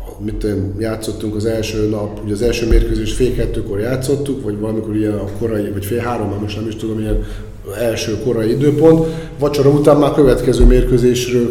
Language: Hungarian